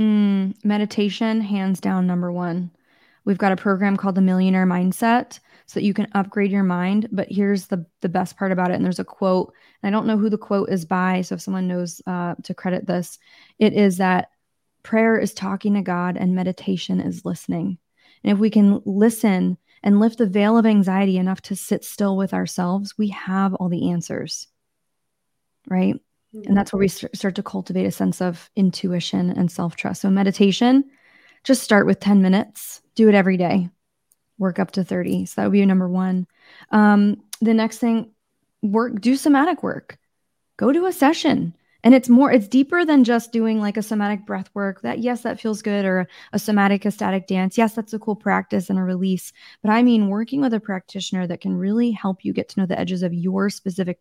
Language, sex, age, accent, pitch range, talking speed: English, female, 20-39, American, 185-220 Hz, 205 wpm